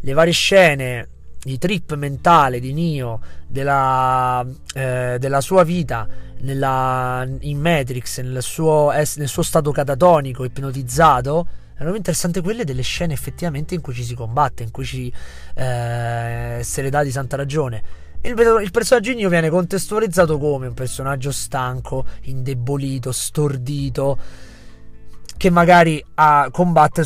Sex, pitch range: male, 125-160 Hz